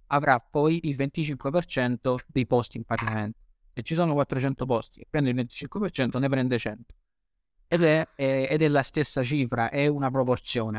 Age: 20-39